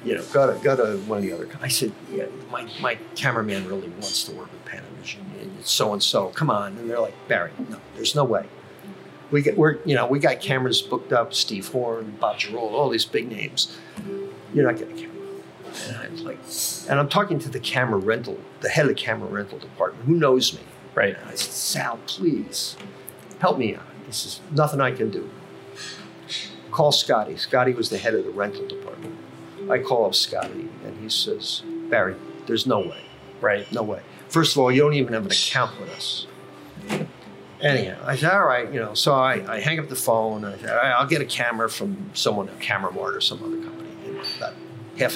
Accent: American